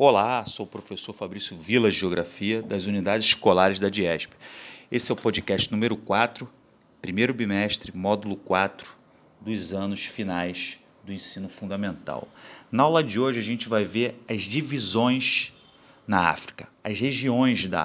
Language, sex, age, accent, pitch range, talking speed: Portuguese, male, 40-59, Brazilian, 100-135 Hz, 145 wpm